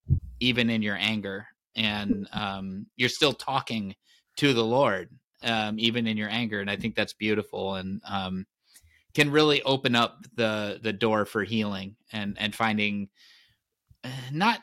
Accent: American